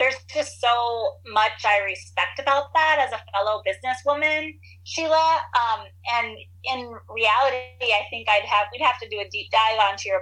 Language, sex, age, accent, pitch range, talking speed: English, female, 30-49, American, 195-265 Hz, 175 wpm